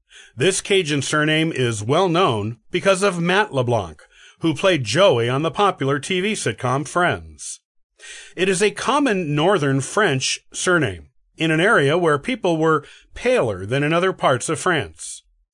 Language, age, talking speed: English, 40-59, 145 wpm